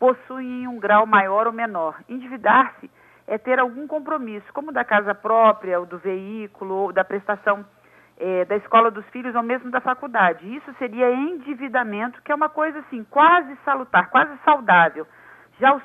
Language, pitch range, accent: Portuguese, 215-265 Hz, Brazilian